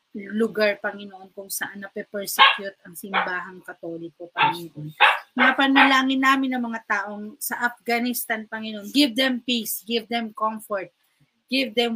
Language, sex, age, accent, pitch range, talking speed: English, female, 20-39, Filipino, 190-230 Hz, 125 wpm